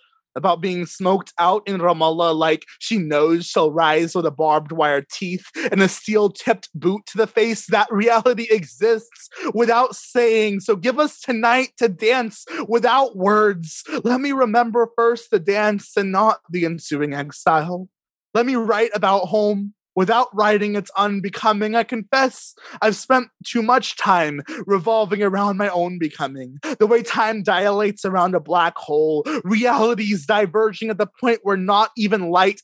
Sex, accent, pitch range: male, American, 185-230 Hz